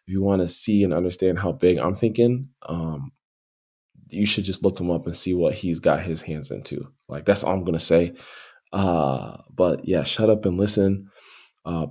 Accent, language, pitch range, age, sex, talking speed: American, English, 85-105 Hz, 20-39, male, 205 wpm